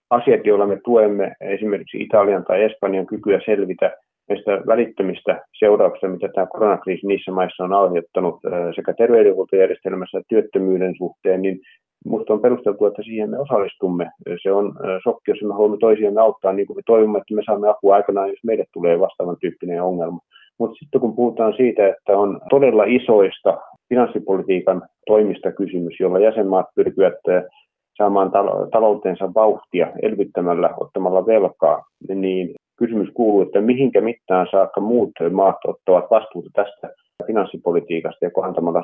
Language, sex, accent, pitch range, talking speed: Finnish, male, native, 95-125 Hz, 140 wpm